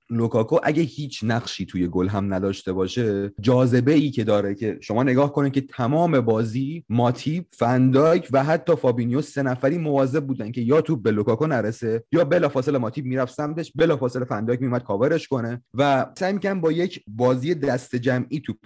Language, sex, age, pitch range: Persian, male, 30-49, 115-150 Hz